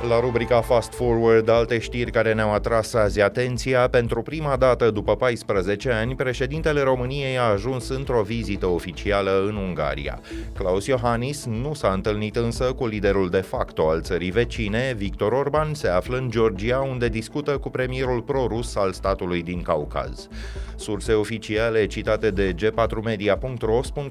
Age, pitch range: 30-49, 95-125 Hz